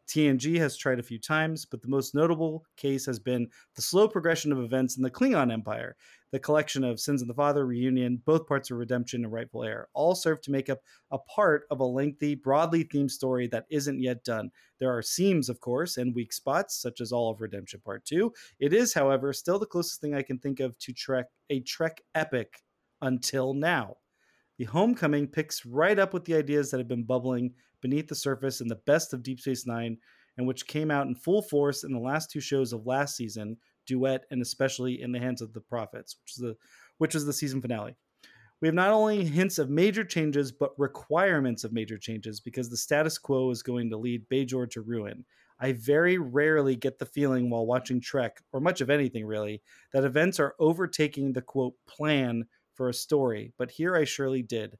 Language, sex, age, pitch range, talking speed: English, male, 30-49, 125-150 Hz, 210 wpm